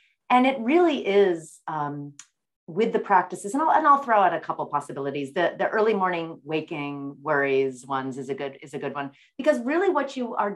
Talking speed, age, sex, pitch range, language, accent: 210 wpm, 40-59, female, 145-200 Hz, English, American